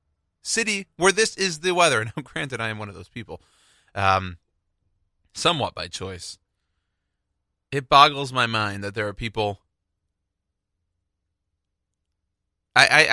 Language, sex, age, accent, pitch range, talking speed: English, male, 30-49, American, 90-130 Hz, 130 wpm